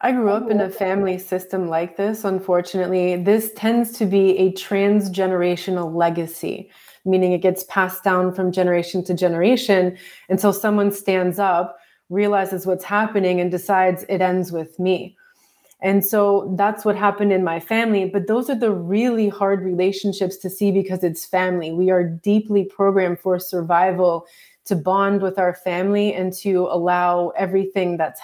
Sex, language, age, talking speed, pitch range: female, English, 20-39, 160 wpm, 180-205 Hz